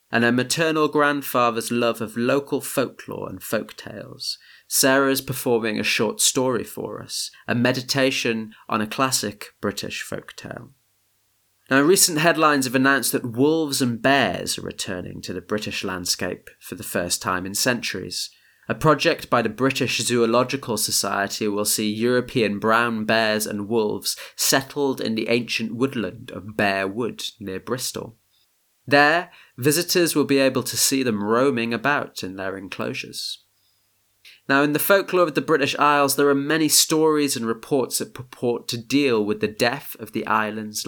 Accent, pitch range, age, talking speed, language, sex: British, 110-135 Hz, 30-49, 160 wpm, English, male